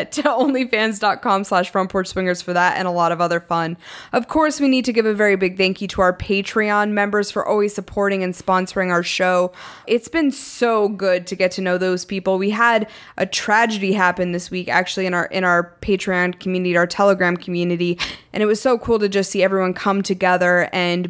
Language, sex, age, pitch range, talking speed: English, female, 20-39, 185-225 Hz, 210 wpm